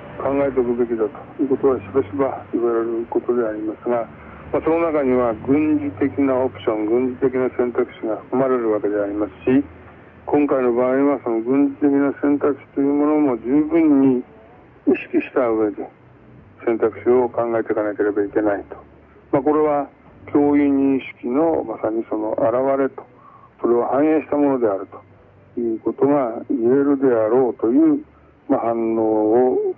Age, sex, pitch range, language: 60-79, male, 110-140 Hz, Korean